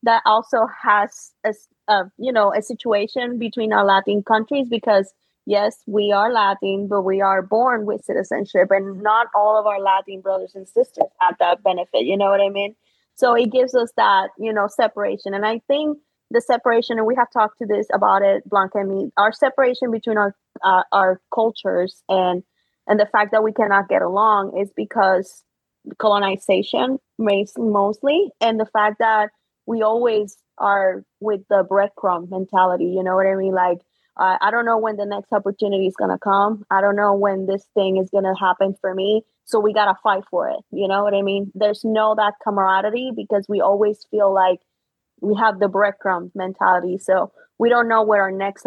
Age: 20-39